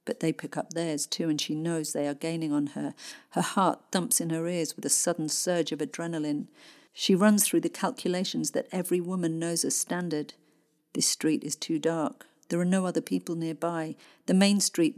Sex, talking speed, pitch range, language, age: female, 205 wpm, 160-200 Hz, English, 50-69